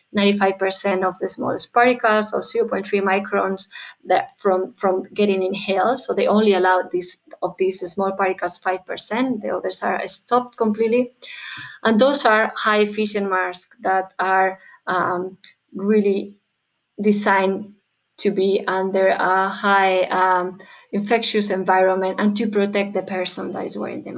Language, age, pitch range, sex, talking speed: English, 20-39, 190-225 Hz, female, 140 wpm